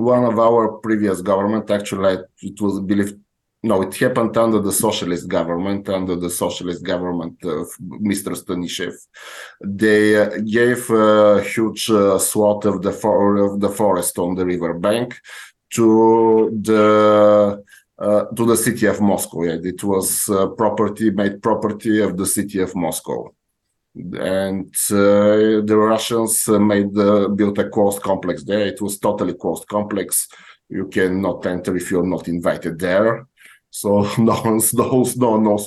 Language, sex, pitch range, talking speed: English, male, 100-110 Hz, 145 wpm